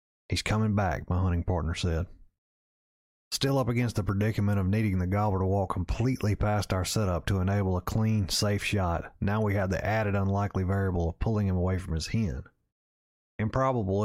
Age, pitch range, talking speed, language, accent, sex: 30-49, 90-105 Hz, 185 wpm, English, American, male